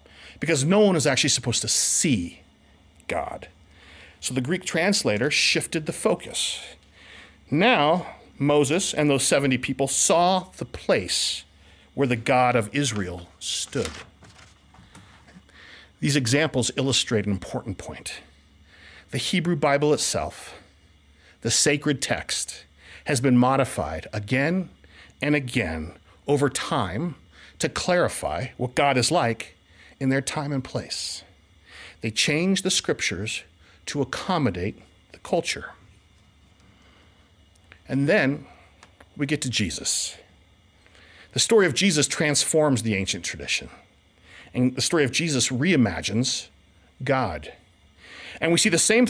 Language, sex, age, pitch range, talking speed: English, male, 50-69, 90-150 Hz, 120 wpm